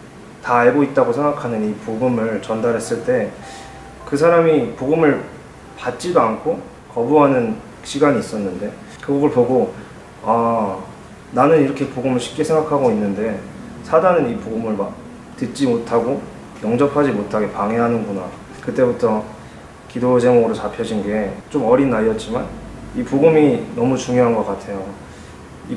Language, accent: Korean, native